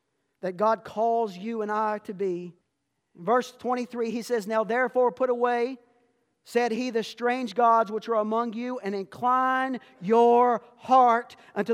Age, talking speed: 50-69, 155 wpm